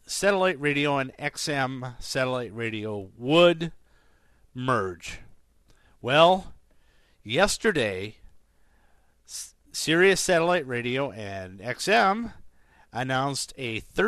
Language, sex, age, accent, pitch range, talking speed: English, male, 50-69, American, 95-140 Hz, 70 wpm